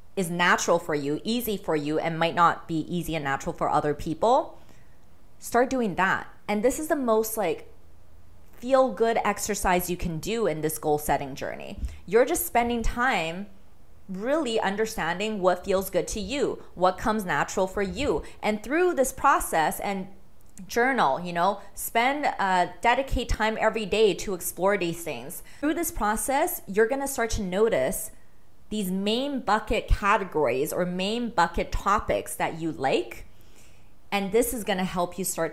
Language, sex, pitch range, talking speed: English, female, 160-215 Hz, 160 wpm